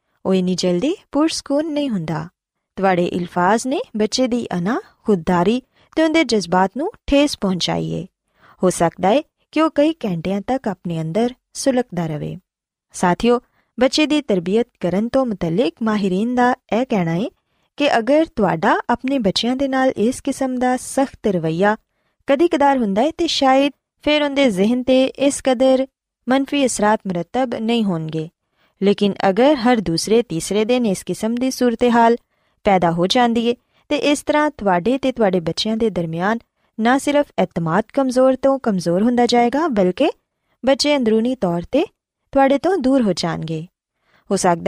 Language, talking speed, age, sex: Punjabi, 145 wpm, 20-39, female